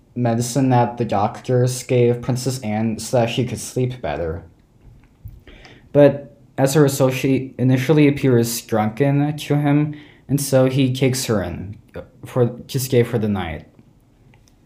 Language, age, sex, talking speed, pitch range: English, 20-39, male, 145 wpm, 120-140 Hz